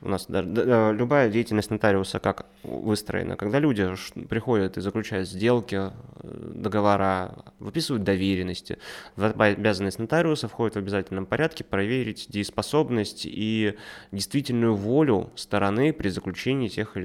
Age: 20-39